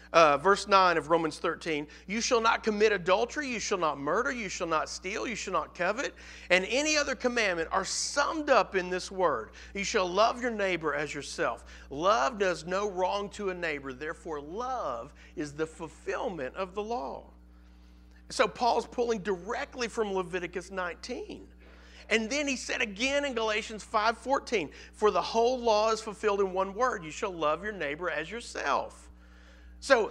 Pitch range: 165-235 Hz